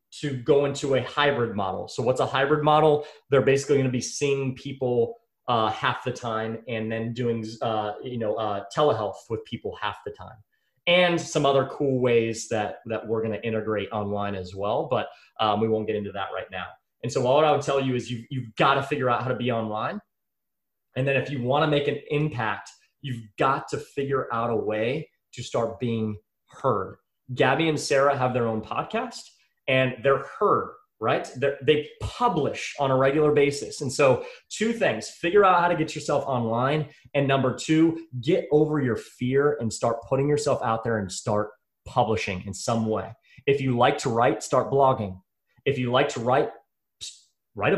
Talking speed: 190 wpm